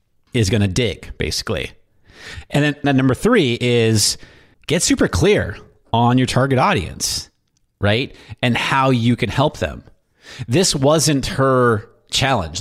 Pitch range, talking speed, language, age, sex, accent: 105-130 Hz, 140 wpm, English, 30-49, male, American